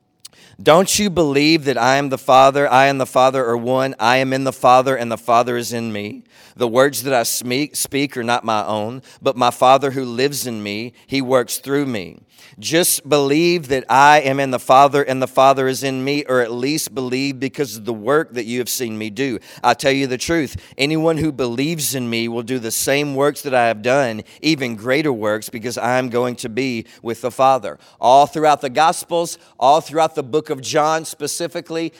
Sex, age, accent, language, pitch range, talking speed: male, 40-59, American, English, 125-150 Hz, 220 wpm